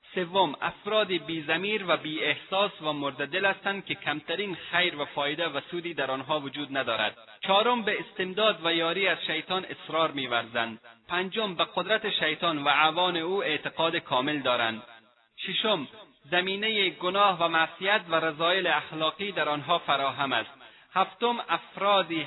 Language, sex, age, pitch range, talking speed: Persian, male, 30-49, 150-200 Hz, 140 wpm